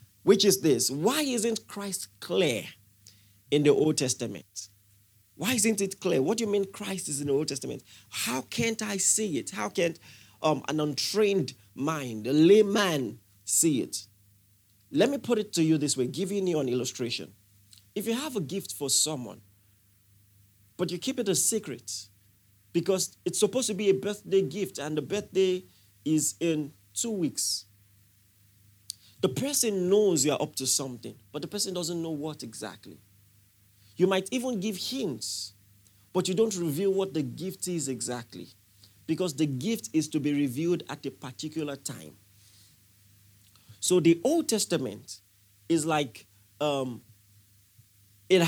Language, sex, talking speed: English, male, 155 wpm